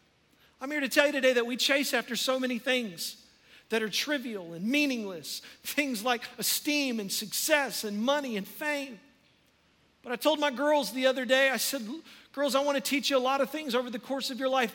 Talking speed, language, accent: 215 wpm, English, American